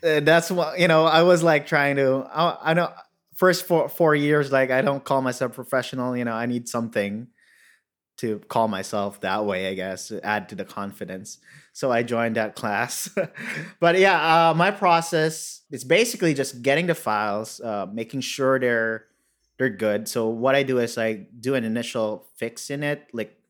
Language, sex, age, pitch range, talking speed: English, male, 20-39, 110-135 Hz, 185 wpm